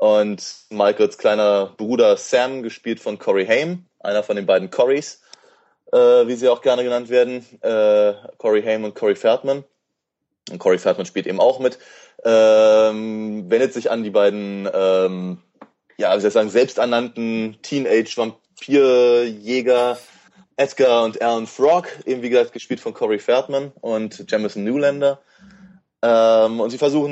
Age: 20-39